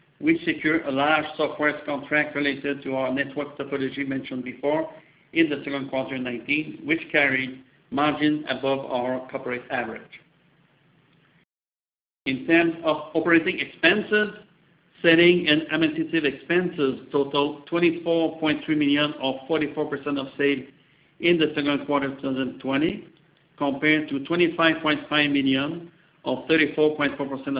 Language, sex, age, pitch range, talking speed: English, male, 60-79, 140-165 Hz, 115 wpm